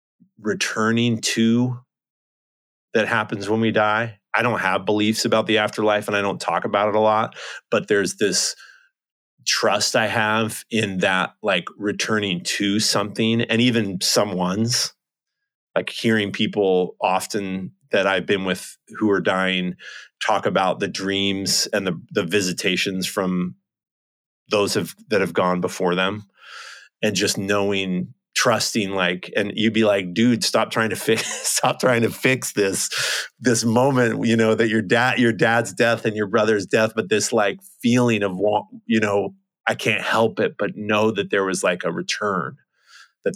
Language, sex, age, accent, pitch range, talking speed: English, male, 30-49, American, 95-115 Hz, 165 wpm